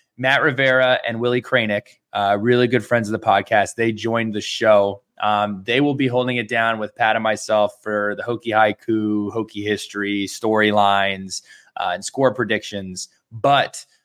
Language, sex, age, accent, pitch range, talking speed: English, male, 20-39, American, 110-130 Hz, 160 wpm